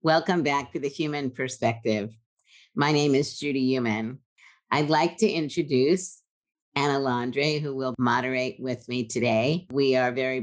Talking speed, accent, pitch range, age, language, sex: 150 wpm, American, 125-150 Hz, 50-69, English, female